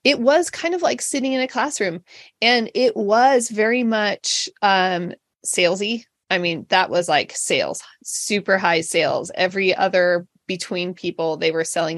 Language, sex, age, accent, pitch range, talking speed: English, female, 20-39, American, 180-225 Hz, 160 wpm